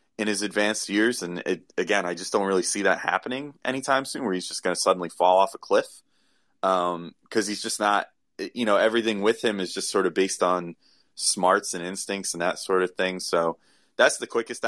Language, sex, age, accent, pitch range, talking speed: English, male, 30-49, American, 95-115 Hz, 220 wpm